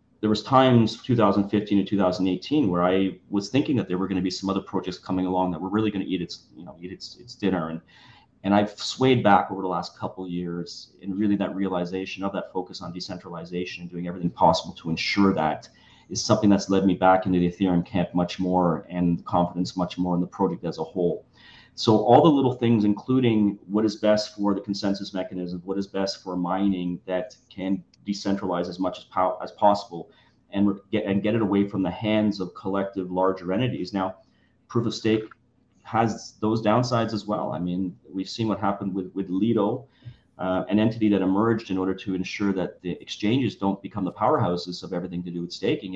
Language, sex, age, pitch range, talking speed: English, male, 30-49, 90-105 Hz, 215 wpm